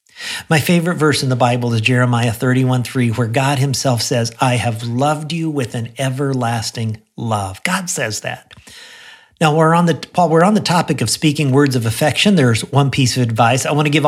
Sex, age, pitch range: male, 50-69, 115-145 Hz